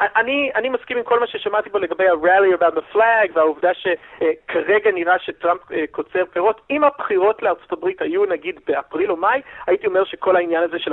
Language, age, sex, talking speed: Hebrew, 40-59, male, 180 wpm